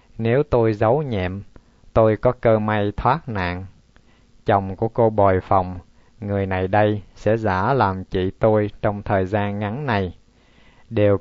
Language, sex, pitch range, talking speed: Vietnamese, male, 95-115 Hz, 155 wpm